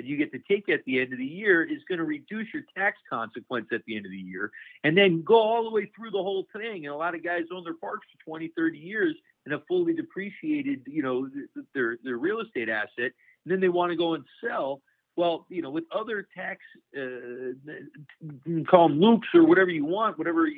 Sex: male